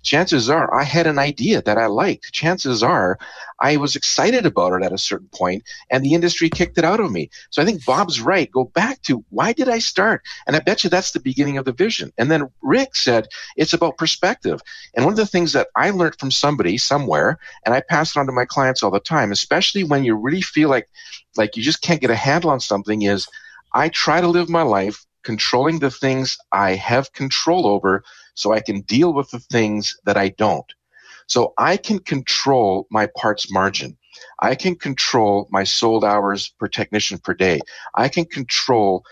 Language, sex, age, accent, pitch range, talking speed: English, male, 50-69, American, 110-170 Hz, 210 wpm